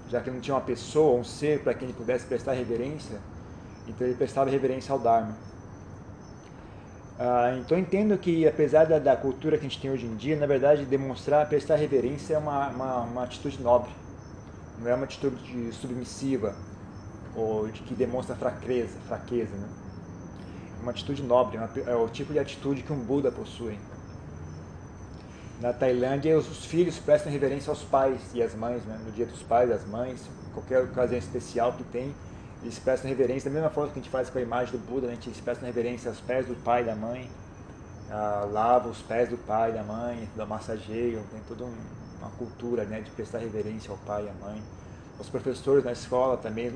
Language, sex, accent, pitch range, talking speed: Portuguese, male, Brazilian, 110-130 Hz, 195 wpm